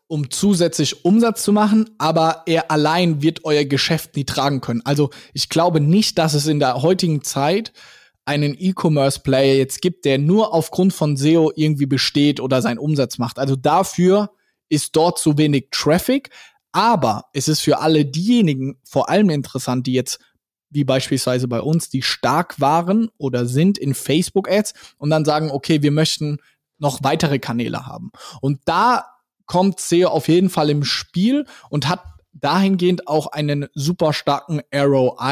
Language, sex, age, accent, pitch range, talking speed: German, male, 20-39, German, 140-175 Hz, 160 wpm